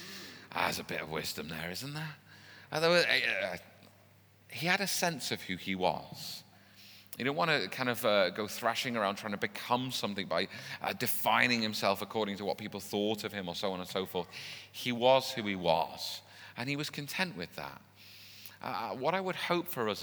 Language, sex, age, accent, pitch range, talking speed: English, male, 30-49, British, 105-150 Hz, 185 wpm